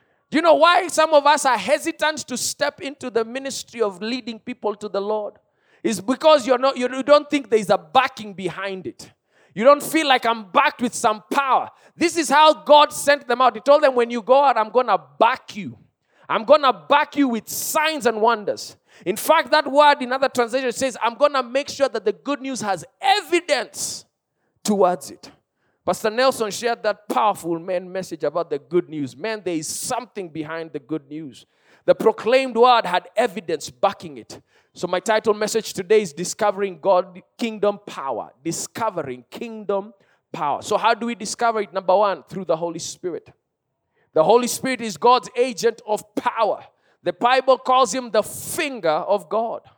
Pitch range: 200-270 Hz